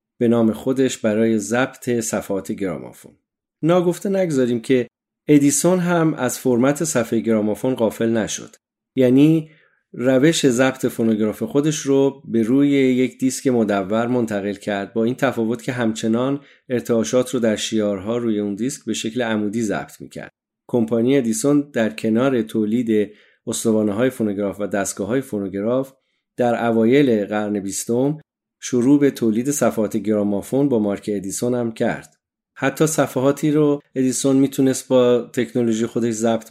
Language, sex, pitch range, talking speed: Persian, male, 110-135 Hz, 135 wpm